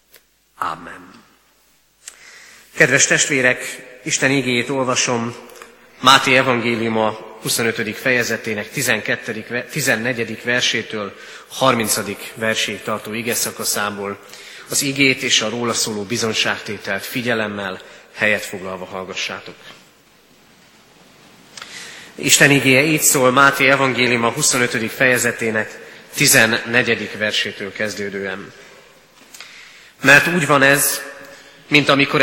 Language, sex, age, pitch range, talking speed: Hungarian, male, 30-49, 115-140 Hz, 85 wpm